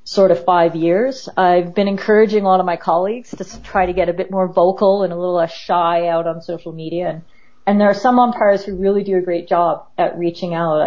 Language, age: English, 40-59